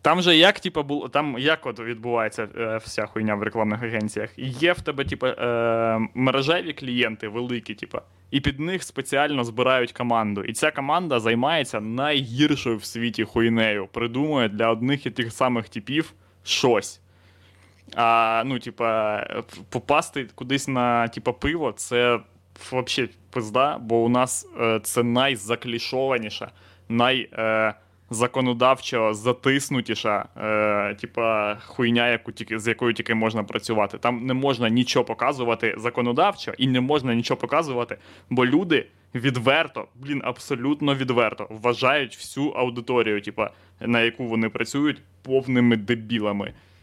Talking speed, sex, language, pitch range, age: 125 wpm, male, Ukrainian, 110-135 Hz, 20-39